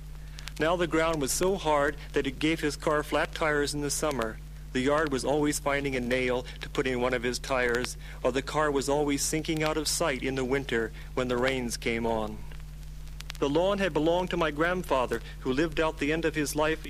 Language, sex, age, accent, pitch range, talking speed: English, male, 50-69, American, 130-155 Hz, 220 wpm